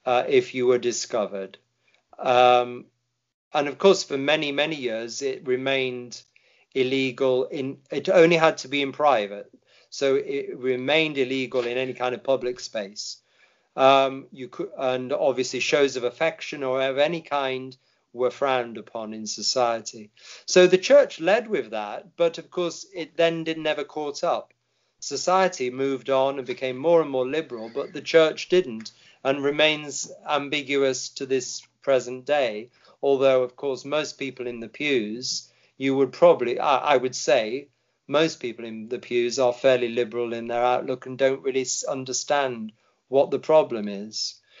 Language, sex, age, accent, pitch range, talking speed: English, male, 40-59, British, 125-155 Hz, 155 wpm